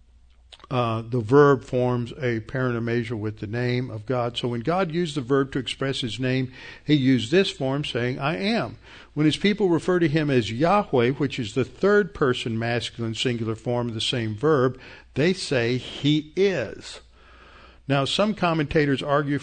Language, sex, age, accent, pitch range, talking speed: English, male, 60-79, American, 120-150 Hz, 175 wpm